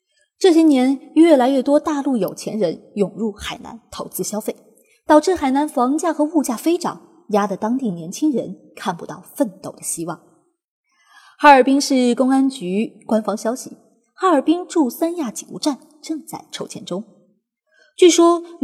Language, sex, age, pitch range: Chinese, female, 20-39, 210-320 Hz